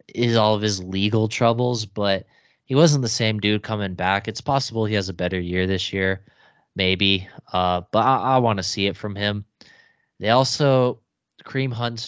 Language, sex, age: English, male, 20-39